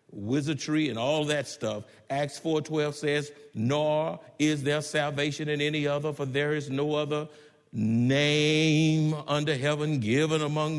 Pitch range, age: 145-185 Hz, 50-69